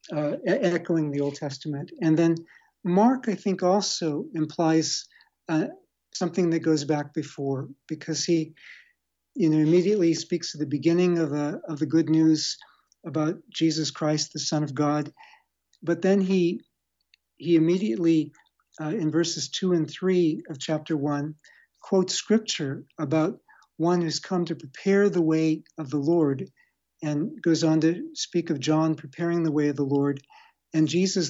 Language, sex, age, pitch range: English, male, 60-79, 150-175 Hz